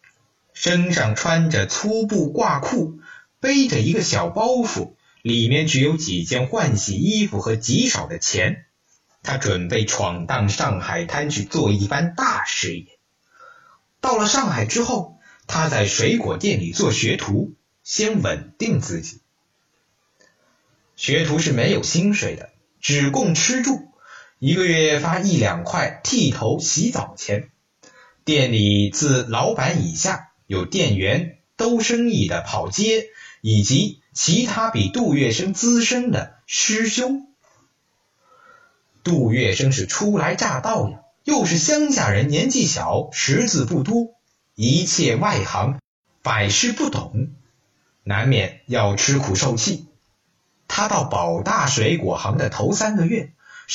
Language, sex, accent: Chinese, male, native